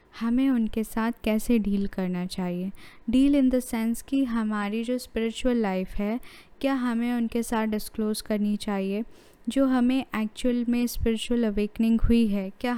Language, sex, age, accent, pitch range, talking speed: Hindi, female, 10-29, native, 210-245 Hz, 155 wpm